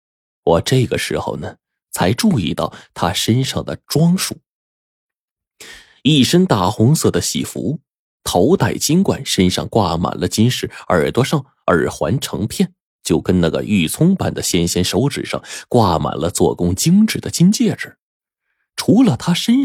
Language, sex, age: Chinese, male, 20-39